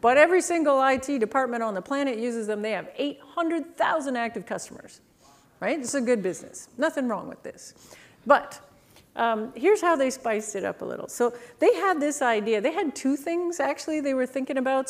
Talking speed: 195 wpm